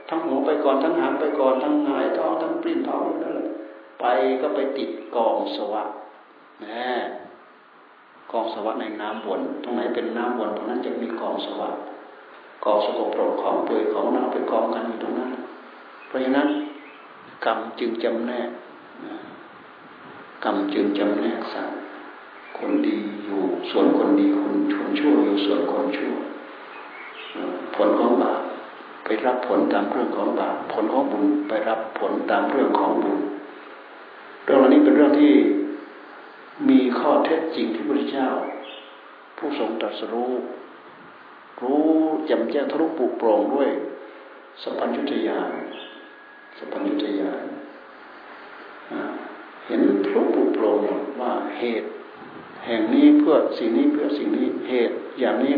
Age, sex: 60-79, male